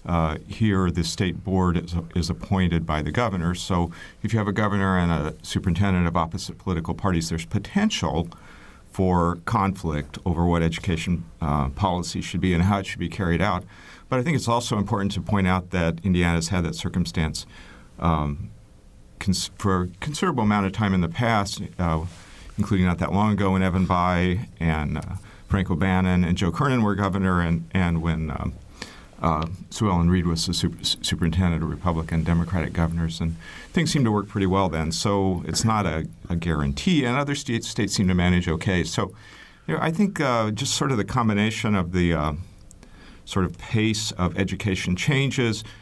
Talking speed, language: 185 wpm, English